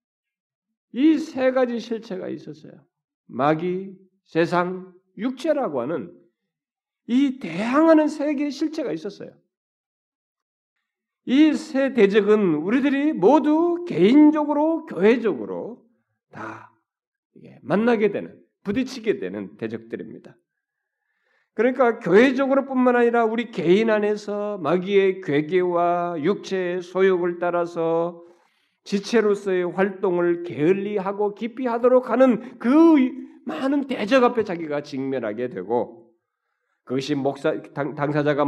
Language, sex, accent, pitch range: Korean, male, native, 175-265 Hz